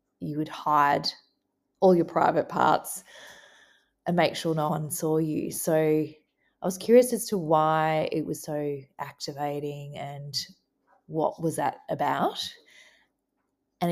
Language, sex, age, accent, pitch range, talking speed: English, female, 20-39, Australian, 150-170 Hz, 135 wpm